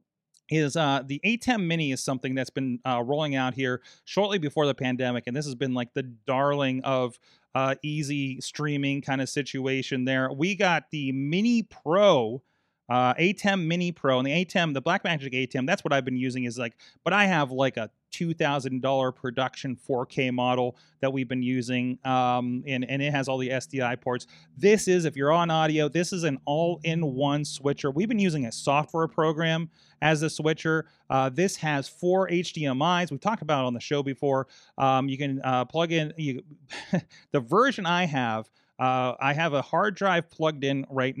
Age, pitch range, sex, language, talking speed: 30-49, 135-175 Hz, male, English, 190 wpm